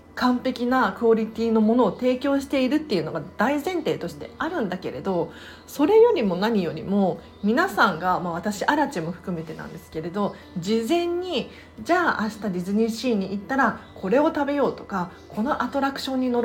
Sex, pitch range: female, 195-290 Hz